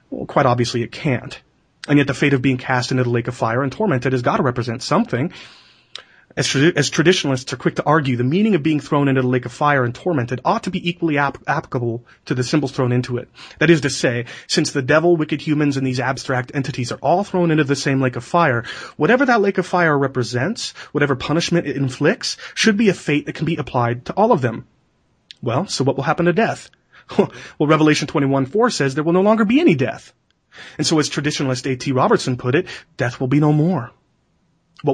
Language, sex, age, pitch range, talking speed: English, male, 30-49, 130-175 Hz, 225 wpm